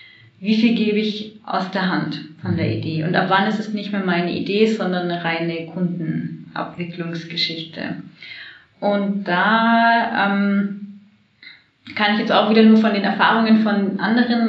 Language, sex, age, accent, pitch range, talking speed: German, female, 30-49, German, 180-220 Hz, 155 wpm